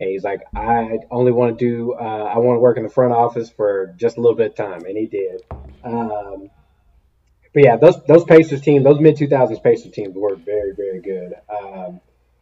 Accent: American